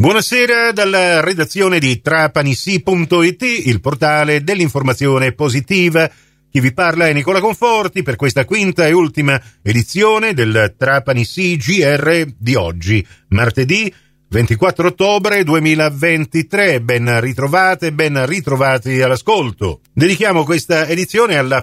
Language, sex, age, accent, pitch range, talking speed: Italian, male, 50-69, native, 125-185 Hz, 110 wpm